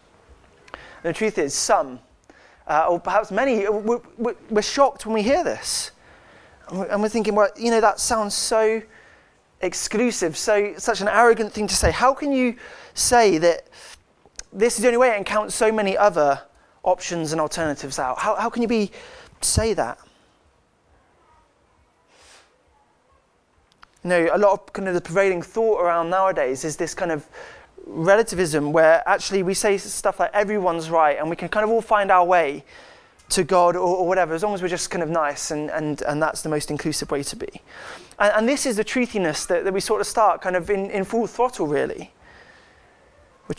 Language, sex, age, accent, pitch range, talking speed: English, male, 20-39, British, 165-215 Hz, 185 wpm